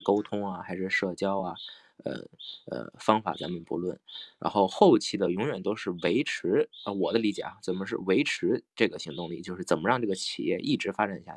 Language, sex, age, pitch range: Chinese, male, 20-39, 95-115 Hz